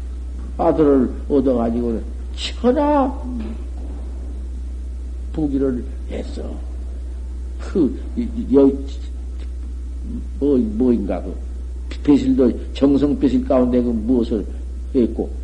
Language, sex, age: Korean, male, 60-79